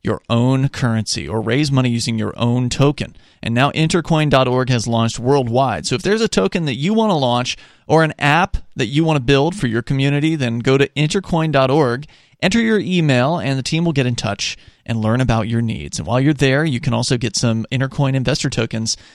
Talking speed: 215 wpm